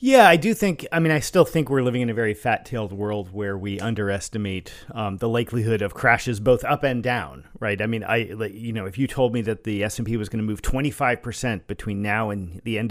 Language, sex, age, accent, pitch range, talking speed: English, male, 40-59, American, 105-135 Hz, 250 wpm